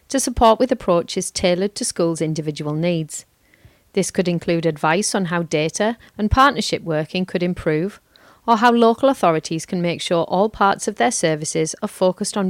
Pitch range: 170-225 Hz